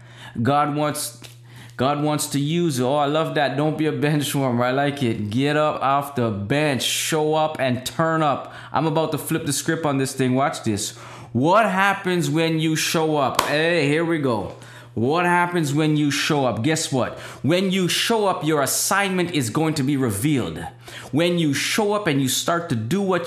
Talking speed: 200 wpm